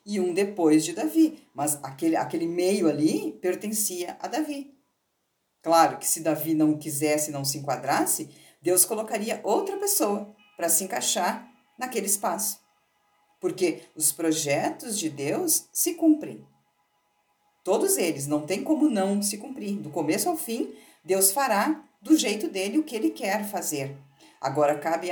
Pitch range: 165-280 Hz